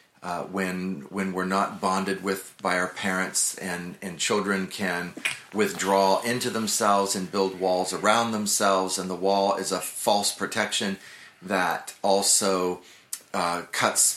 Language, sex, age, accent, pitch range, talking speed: English, male, 30-49, American, 95-105 Hz, 140 wpm